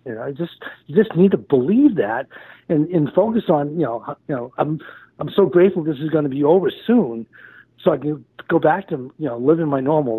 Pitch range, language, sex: 135-175 Hz, English, male